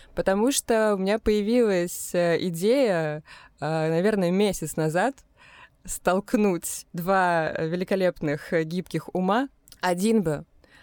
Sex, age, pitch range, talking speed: female, 20-39, 160-200 Hz, 90 wpm